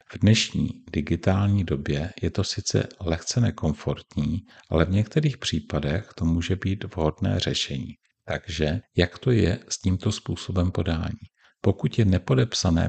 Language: Czech